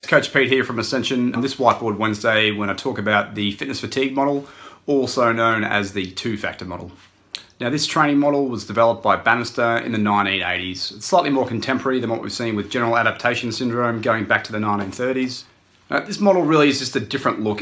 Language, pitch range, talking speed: English, 105-135 Hz, 200 wpm